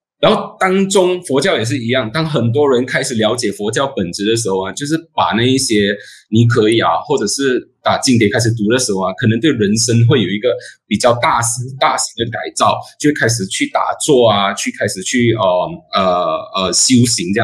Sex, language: male, Chinese